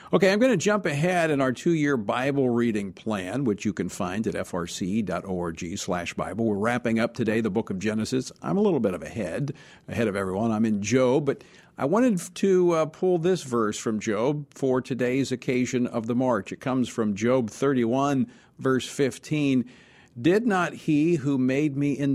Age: 50-69